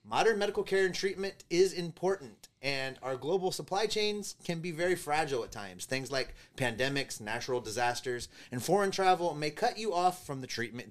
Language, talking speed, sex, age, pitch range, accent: English, 180 wpm, male, 30-49, 120-180 Hz, American